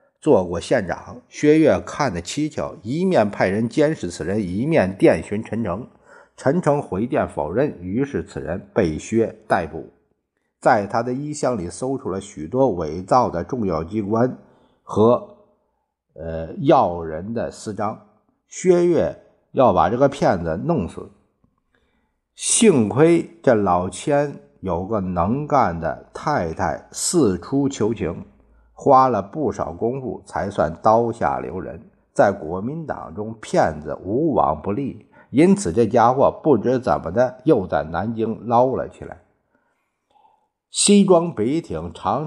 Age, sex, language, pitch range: 50-69, male, Chinese, 95-145 Hz